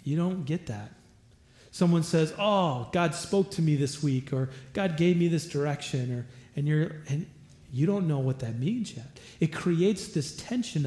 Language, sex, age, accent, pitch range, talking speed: English, male, 40-59, American, 130-165 Hz, 190 wpm